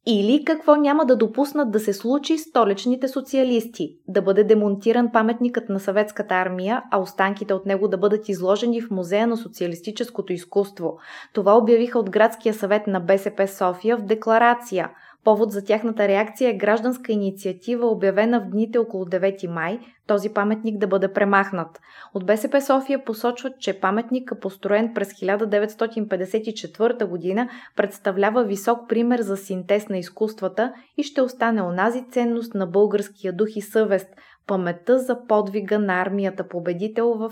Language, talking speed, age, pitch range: Bulgarian, 150 wpm, 20-39, 195-235 Hz